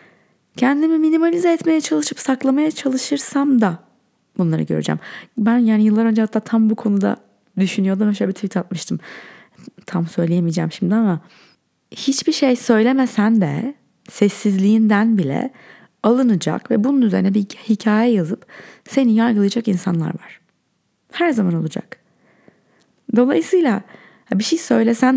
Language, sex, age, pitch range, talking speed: Turkish, female, 30-49, 190-245 Hz, 120 wpm